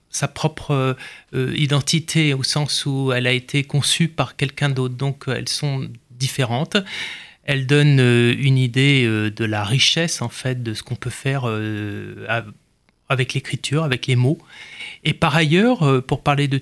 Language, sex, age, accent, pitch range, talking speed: French, male, 30-49, French, 120-140 Hz, 175 wpm